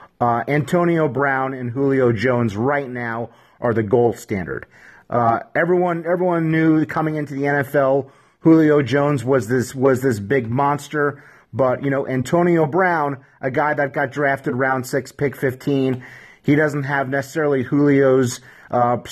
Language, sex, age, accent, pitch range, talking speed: English, male, 30-49, American, 125-160 Hz, 150 wpm